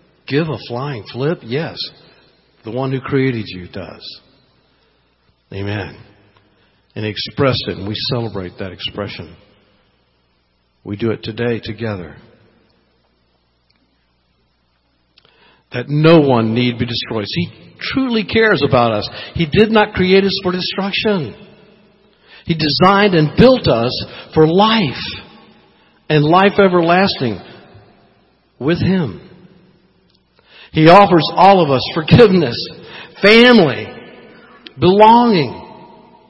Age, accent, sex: 60-79, American, male